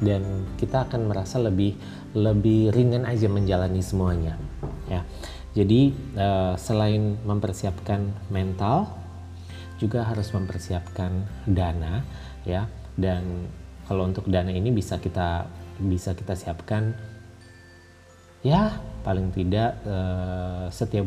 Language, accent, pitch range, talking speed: Indonesian, native, 90-105 Hz, 95 wpm